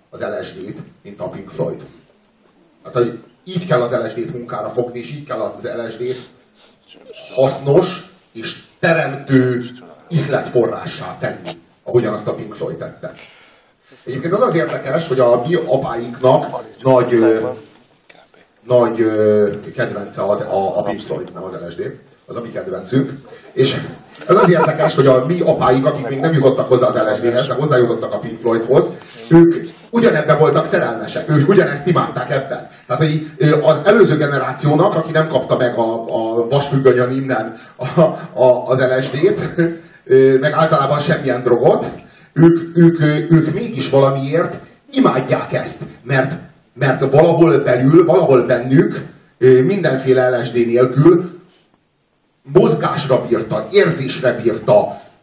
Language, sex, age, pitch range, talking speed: Hungarian, male, 30-49, 125-160 Hz, 130 wpm